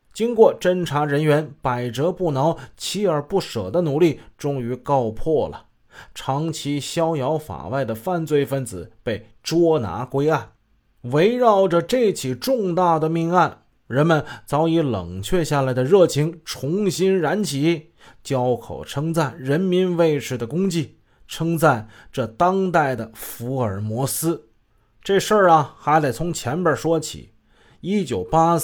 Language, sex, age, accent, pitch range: Chinese, male, 20-39, native, 125-175 Hz